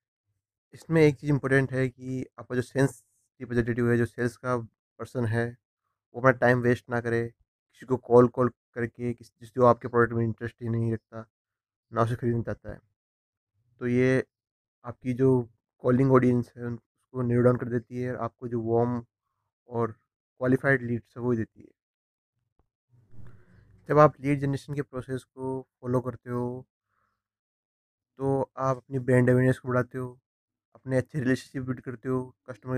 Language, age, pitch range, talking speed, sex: Hindi, 30-49, 115-130 Hz, 160 wpm, male